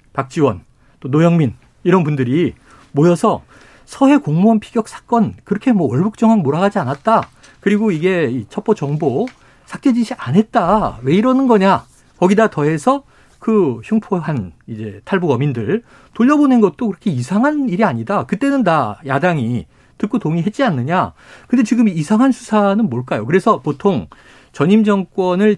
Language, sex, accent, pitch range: Korean, male, native, 145-220 Hz